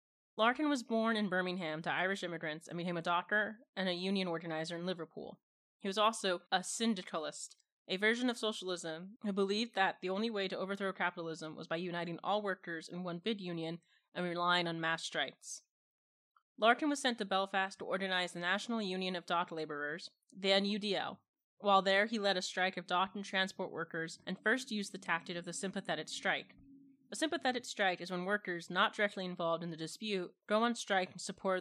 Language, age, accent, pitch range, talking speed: English, 20-39, American, 175-210 Hz, 195 wpm